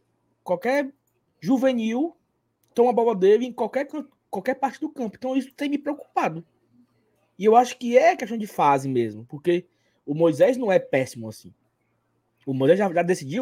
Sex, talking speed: male, 170 wpm